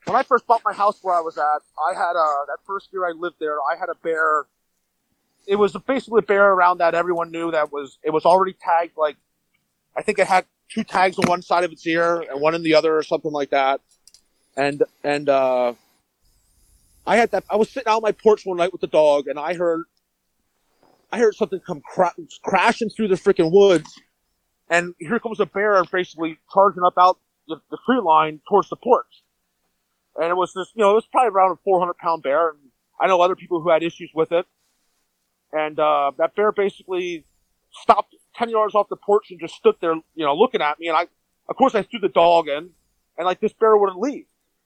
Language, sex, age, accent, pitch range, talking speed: English, male, 30-49, American, 155-200 Hz, 220 wpm